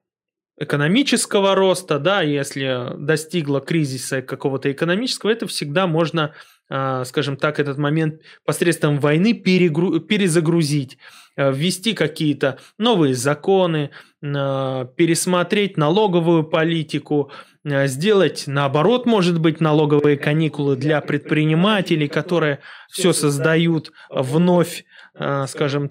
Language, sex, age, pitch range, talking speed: Russian, male, 20-39, 145-185 Hz, 90 wpm